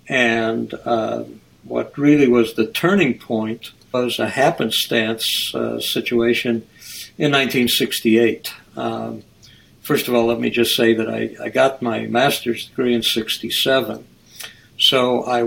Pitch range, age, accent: 115-125 Hz, 60-79, American